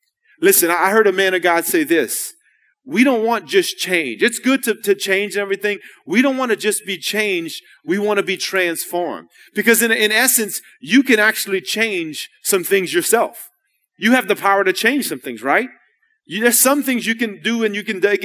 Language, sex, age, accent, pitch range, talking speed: English, male, 30-49, American, 175-250 Hz, 205 wpm